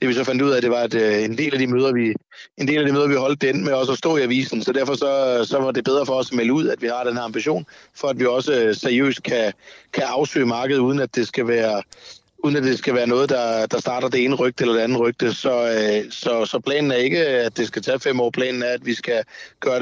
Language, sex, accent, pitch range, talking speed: Danish, male, native, 115-130 Hz, 290 wpm